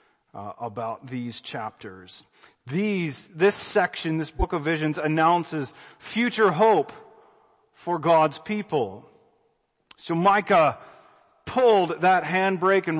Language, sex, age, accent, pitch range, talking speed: English, male, 40-59, American, 160-205 Hz, 110 wpm